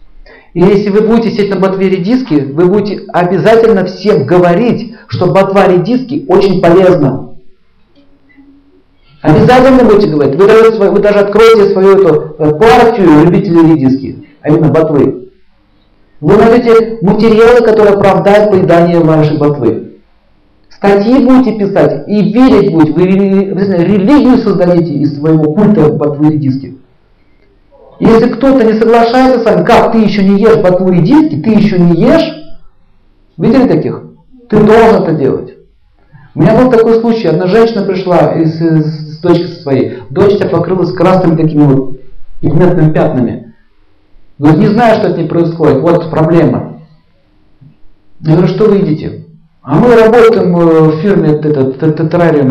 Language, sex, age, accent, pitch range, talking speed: Russian, male, 40-59, native, 150-215 Hz, 140 wpm